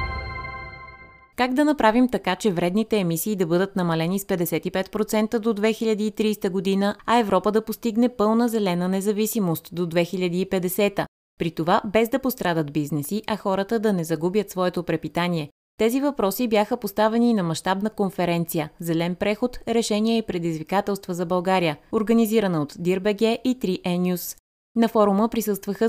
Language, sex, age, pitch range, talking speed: Bulgarian, female, 20-39, 175-220 Hz, 140 wpm